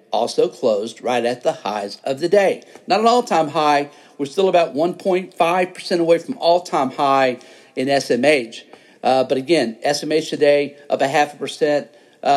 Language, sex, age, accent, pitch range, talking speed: English, male, 50-69, American, 140-185 Hz, 160 wpm